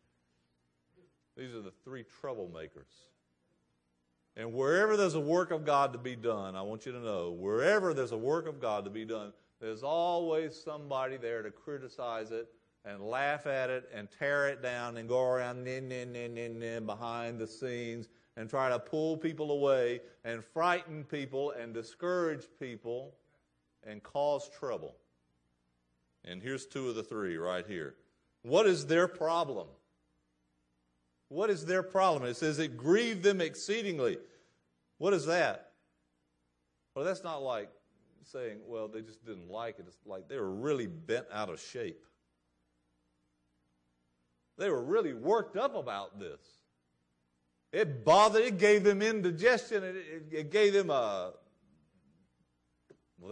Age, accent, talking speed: 50-69, American, 150 wpm